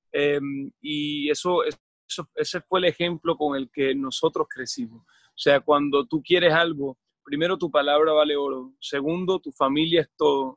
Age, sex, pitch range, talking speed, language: 30-49, male, 145-170 Hz, 155 wpm, Spanish